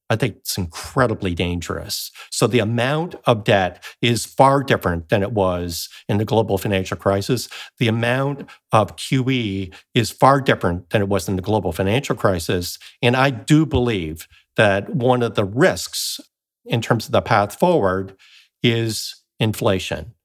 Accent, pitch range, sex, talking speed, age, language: American, 100-130 Hz, male, 155 wpm, 50-69, English